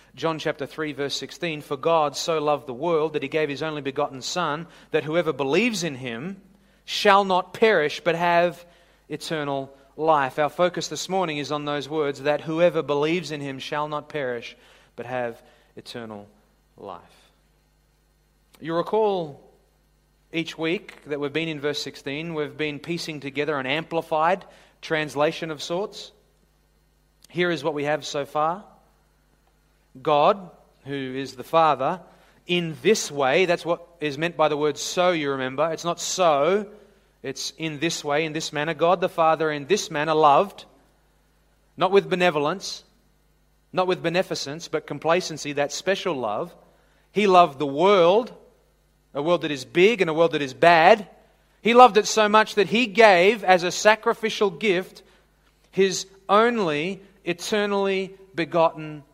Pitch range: 145-185 Hz